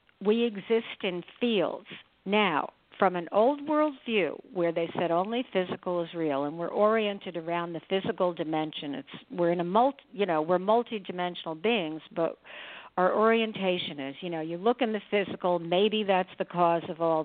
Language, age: English, 50-69